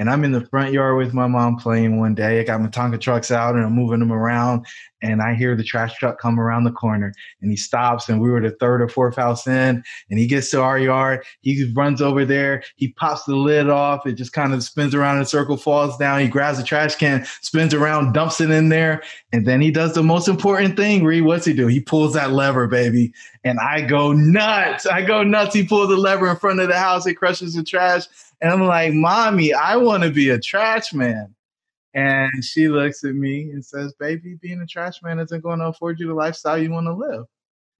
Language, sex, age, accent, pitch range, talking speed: English, male, 20-39, American, 130-185 Hz, 245 wpm